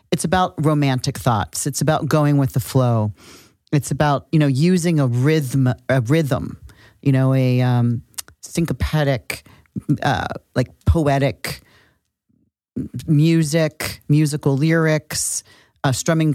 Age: 40-59